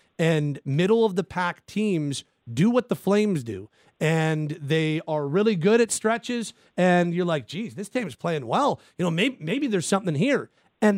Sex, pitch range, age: male, 160-205 Hz, 40-59